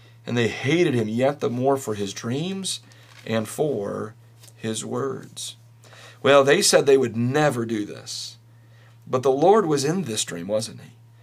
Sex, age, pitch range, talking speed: male, 40-59, 115-130 Hz, 165 wpm